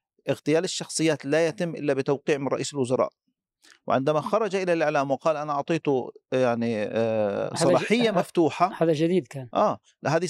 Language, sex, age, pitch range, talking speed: Arabic, male, 40-59, 140-180 Hz, 140 wpm